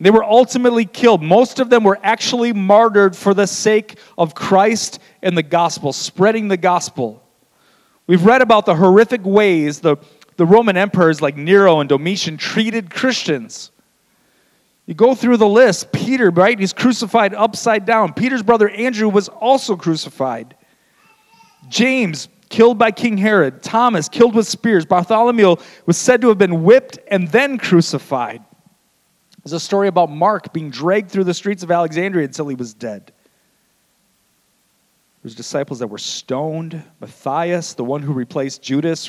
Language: English